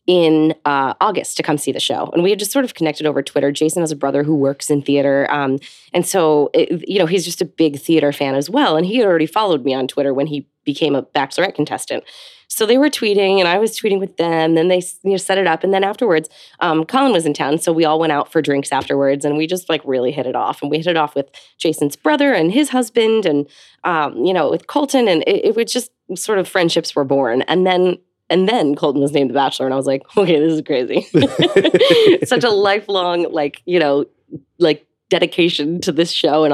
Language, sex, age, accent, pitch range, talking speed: English, female, 20-39, American, 145-195 Hz, 245 wpm